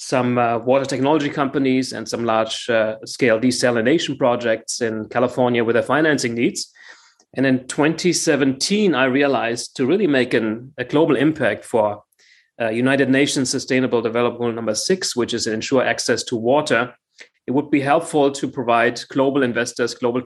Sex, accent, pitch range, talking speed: male, German, 120-145 Hz, 165 wpm